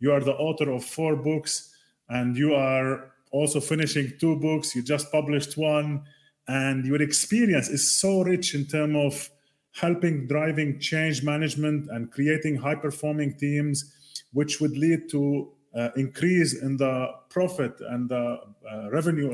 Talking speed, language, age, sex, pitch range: 150 wpm, English, 30-49, male, 130-155 Hz